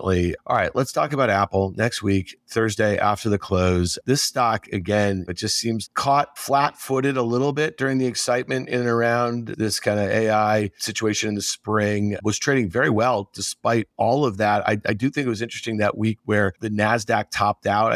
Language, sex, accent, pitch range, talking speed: English, male, American, 105-125 Hz, 200 wpm